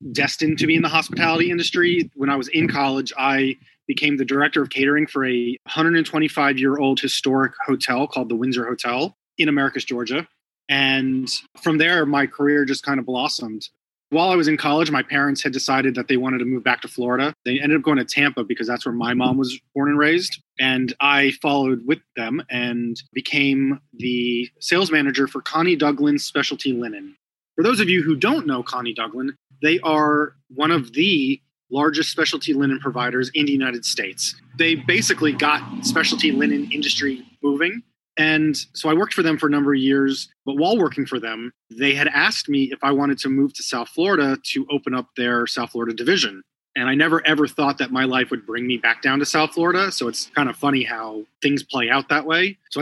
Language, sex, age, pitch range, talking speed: English, male, 20-39, 130-155 Hz, 200 wpm